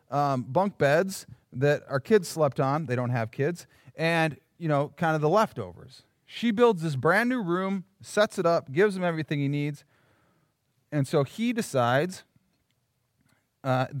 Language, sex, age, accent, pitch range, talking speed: English, male, 40-59, American, 130-175 Hz, 165 wpm